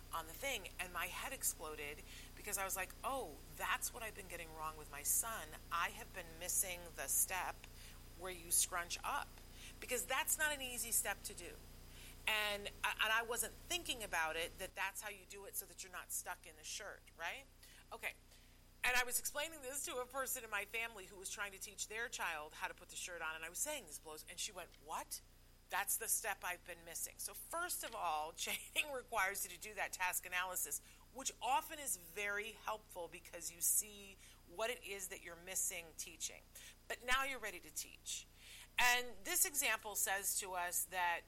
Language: English